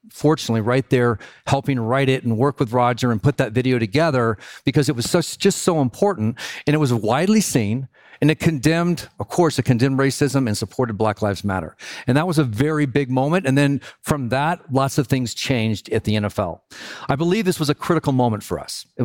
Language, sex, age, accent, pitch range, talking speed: English, male, 40-59, American, 120-150 Hz, 215 wpm